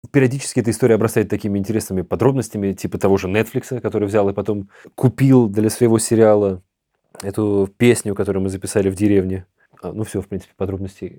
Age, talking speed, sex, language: 20-39, 165 wpm, male, Russian